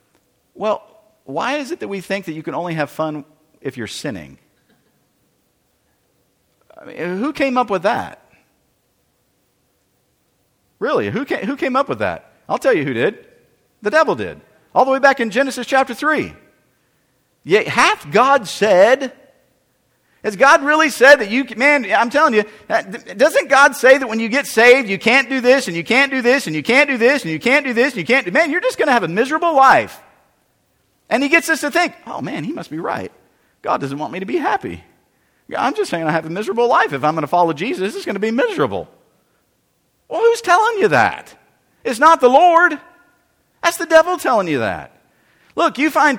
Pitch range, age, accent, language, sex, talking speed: 210-305 Hz, 50-69, American, English, male, 210 wpm